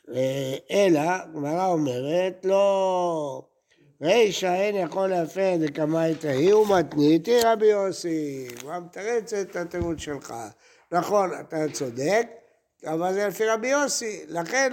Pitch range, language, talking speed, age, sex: 155-205 Hz, Hebrew, 115 wpm, 60-79, male